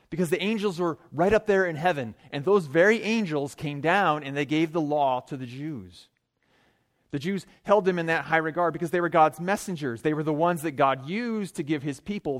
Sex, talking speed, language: male, 225 wpm, English